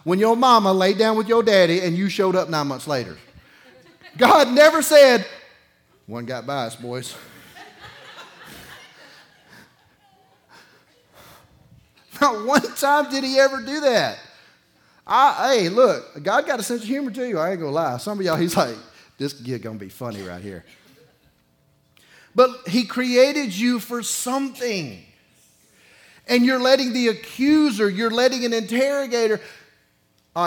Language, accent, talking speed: English, American, 145 wpm